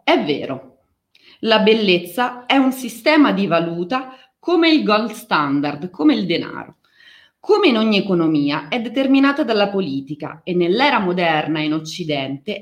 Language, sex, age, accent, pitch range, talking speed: Italian, female, 30-49, native, 180-275 Hz, 140 wpm